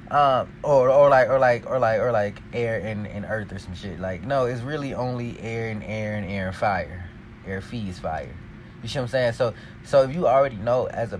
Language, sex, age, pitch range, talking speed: English, male, 20-39, 110-165 Hz, 240 wpm